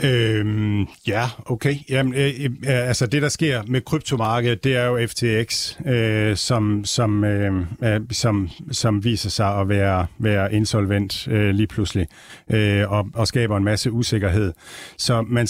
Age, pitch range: 50-69, 105-125 Hz